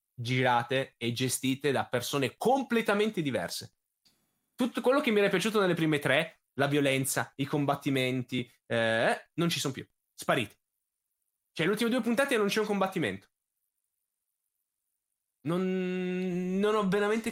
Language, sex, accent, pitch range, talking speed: Italian, male, native, 130-180 Hz, 130 wpm